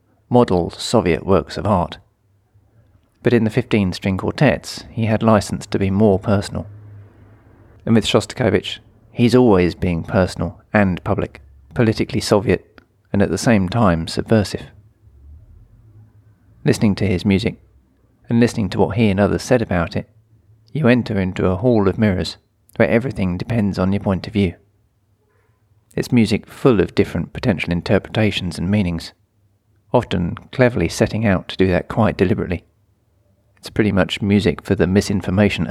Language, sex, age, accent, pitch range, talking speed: English, male, 40-59, British, 95-110 Hz, 150 wpm